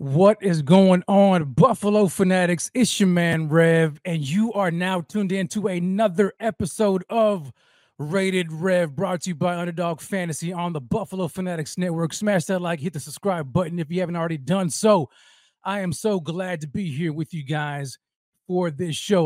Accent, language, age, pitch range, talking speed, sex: American, English, 30-49, 160-200 Hz, 185 wpm, male